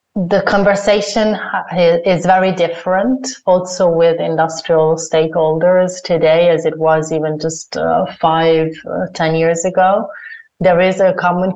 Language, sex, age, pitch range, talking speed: English, female, 30-49, 155-185 Hz, 130 wpm